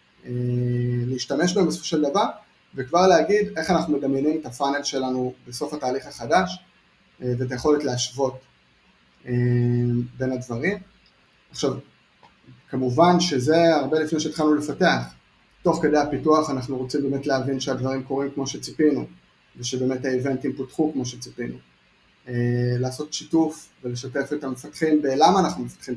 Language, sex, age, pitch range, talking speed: Hebrew, male, 30-49, 125-155 Hz, 130 wpm